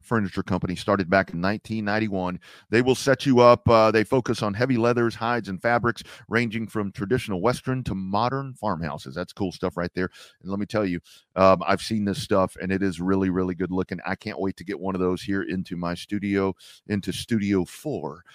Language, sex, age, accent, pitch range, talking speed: English, male, 40-59, American, 95-120 Hz, 210 wpm